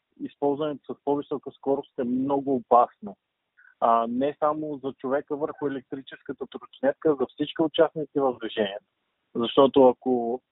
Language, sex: Bulgarian, male